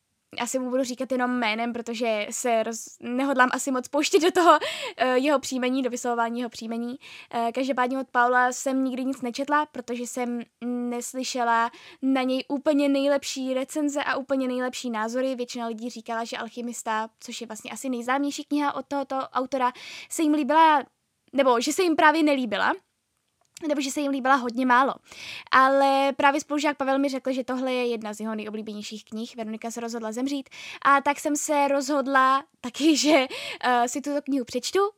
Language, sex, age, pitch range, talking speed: Czech, female, 10-29, 245-285 Hz, 170 wpm